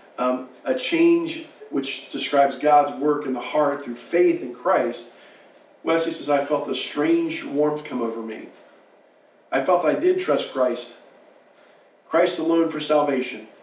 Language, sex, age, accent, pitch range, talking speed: English, male, 40-59, American, 135-190 Hz, 150 wpm